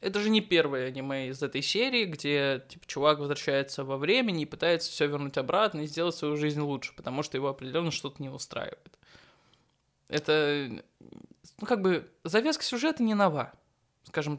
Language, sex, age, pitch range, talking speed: Russian, male, 20-39, 140-170 Hz, 165 wpm